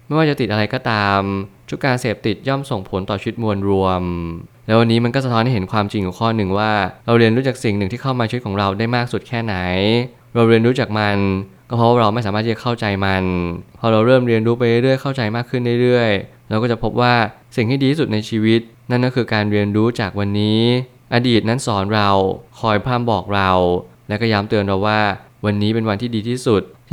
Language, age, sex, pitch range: Thai, 20-39, male, 100-120 Hz